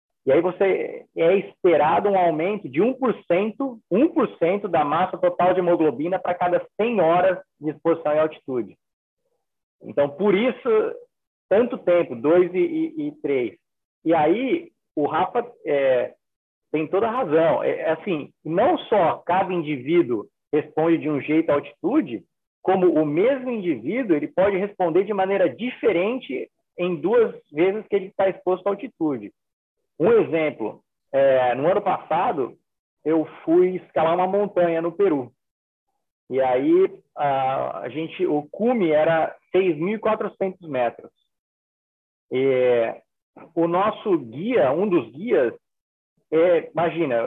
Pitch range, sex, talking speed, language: 155-240 Hz, male, 115 wpm, Portuguese